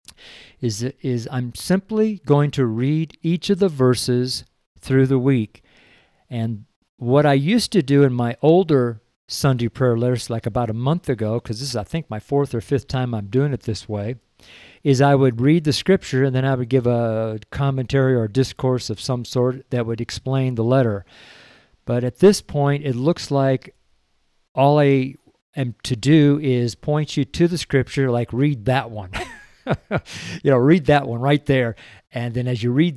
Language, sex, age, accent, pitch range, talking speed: English, male, 50-69, American, 120-145 Hz, 190 wpm